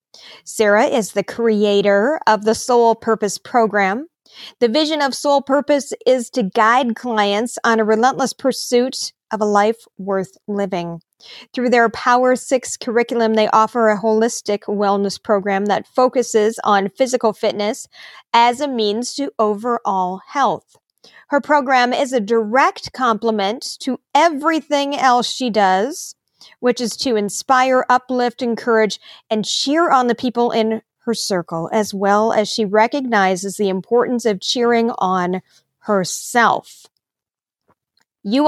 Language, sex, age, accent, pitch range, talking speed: English, female, 40-59, American, 205-250 Hz, 135 wpm